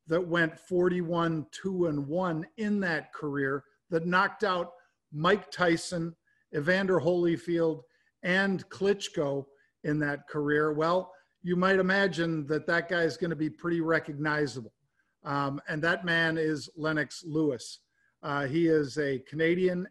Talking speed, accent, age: 135 wpm, American, 50-69